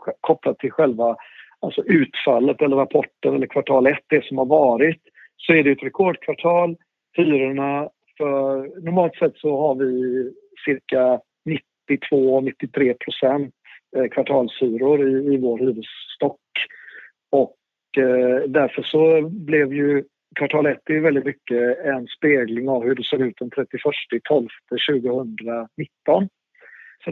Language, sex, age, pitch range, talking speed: Swedish, male, 50-69, 130-150 Hz, 130 wpm